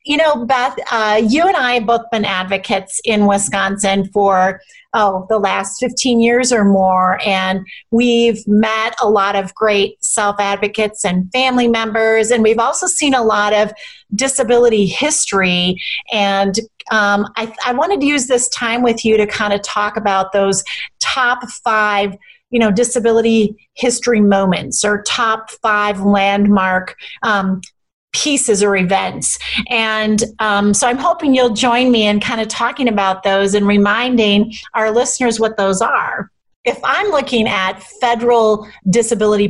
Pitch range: 195-235 Hz